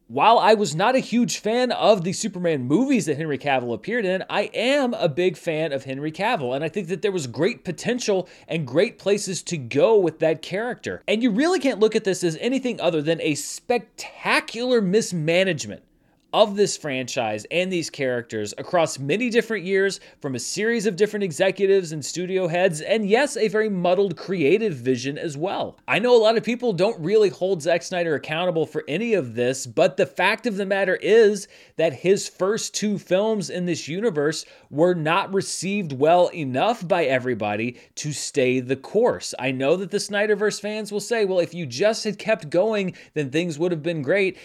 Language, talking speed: English, 195 wpm